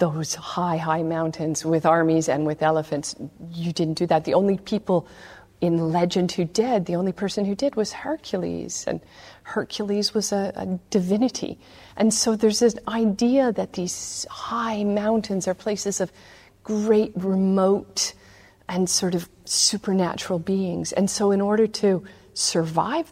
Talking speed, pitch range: 150 wpm, 165-210 Hz